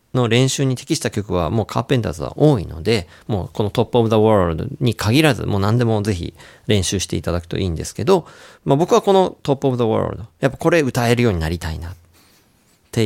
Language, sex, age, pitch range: Japanese, male, 40-59, 90-145 Hz